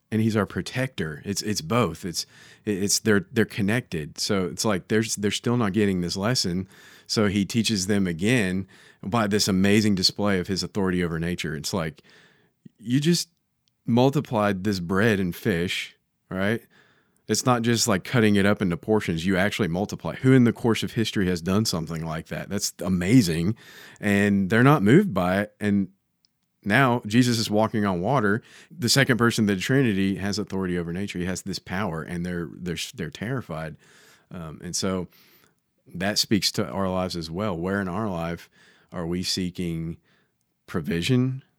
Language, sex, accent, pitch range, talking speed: English, male, American, 90-110 Hz, 175 wpm